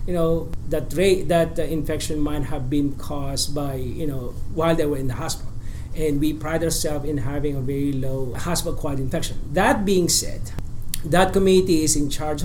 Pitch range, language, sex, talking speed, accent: 135-160 Hz, English, male, 195 wpm, Filipino